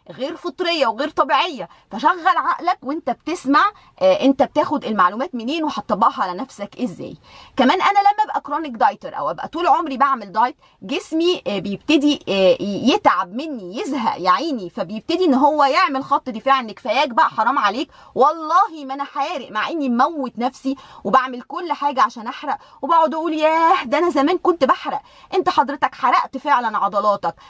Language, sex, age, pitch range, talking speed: Arabic, female, 20-39, 255-320 Hz, 155 wpm